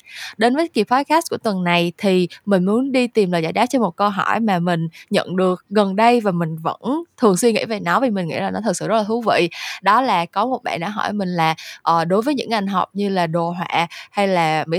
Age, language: 20-39, Vietnamese